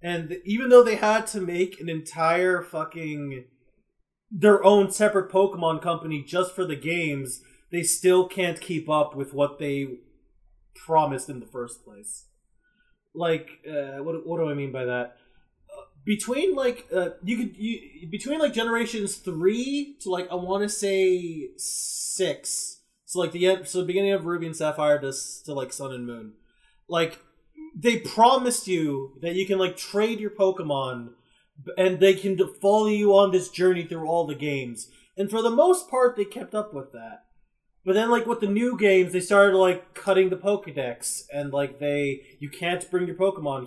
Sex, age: male, 20-39